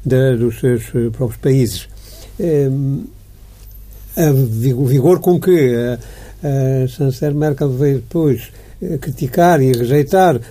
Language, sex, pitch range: Portuguese, male, 125-160 Hz